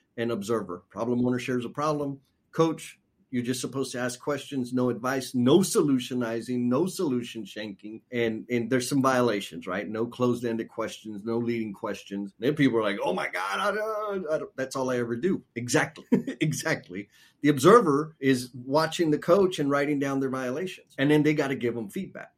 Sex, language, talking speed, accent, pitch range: male, English, 190 wpm, American, 120-150 Hz